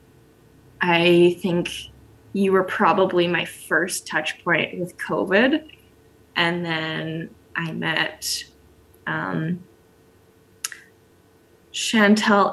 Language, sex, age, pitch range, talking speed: English, female, 10-29, 170-210 Hz, 80 wpm